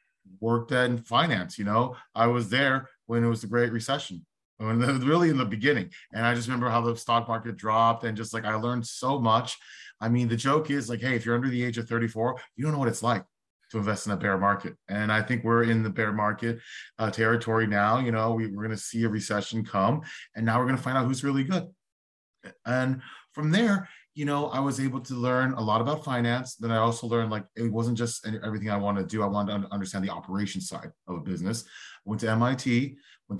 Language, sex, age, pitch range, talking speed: English, male, 30-49, 105-125 Hz, 235 wpm